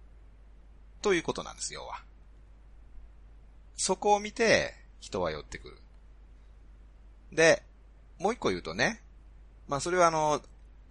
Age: 30-49